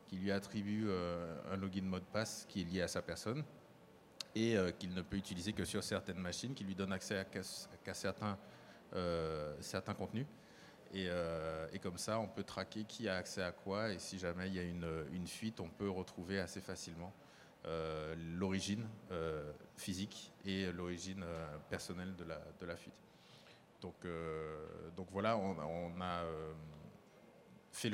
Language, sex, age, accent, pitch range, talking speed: French, male, 20-39, French, 90-105 Hz, 185 wpm